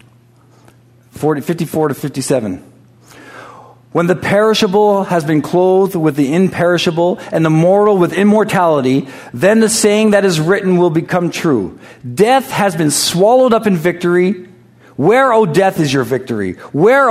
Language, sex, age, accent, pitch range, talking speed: English, male, 50-69, American, 155-235 Hz, 140 wpm